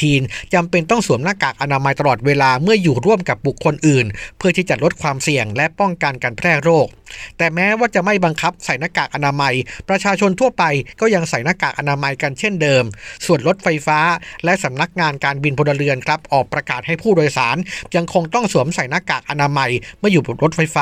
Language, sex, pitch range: Thai, male, 140-185 Hz